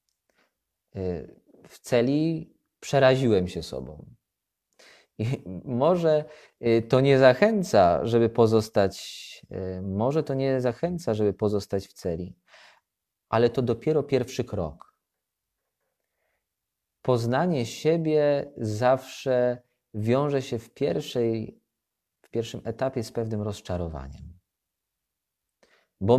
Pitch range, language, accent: 95-130 Hz, Polish, native